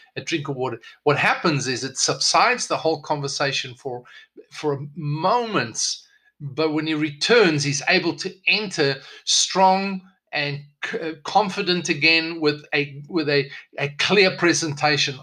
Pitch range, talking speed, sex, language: 140-175 Hz, 135 wpm, male, English